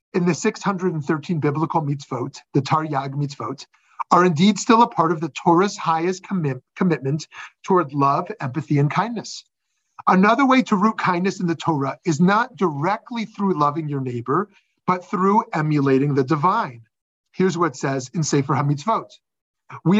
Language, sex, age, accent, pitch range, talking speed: English, male, 40-59, American, 150-200 Hz, 155 wpm